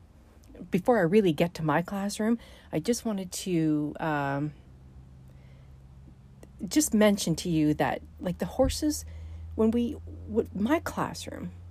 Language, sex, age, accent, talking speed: English, female, 40-59, American, 130 wpm